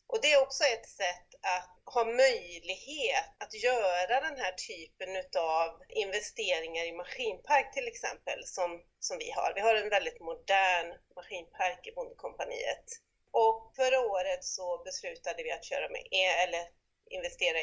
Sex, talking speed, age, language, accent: female, 145 wpm, 30-49, Swedish, native